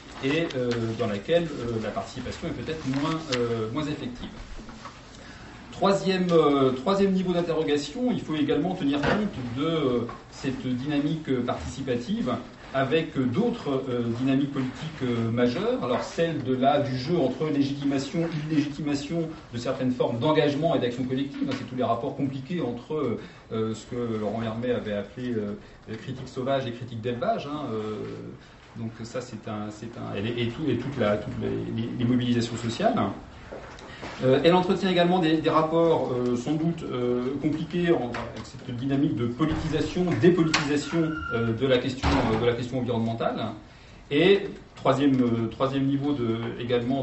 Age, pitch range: 40-59, 120-155 Hz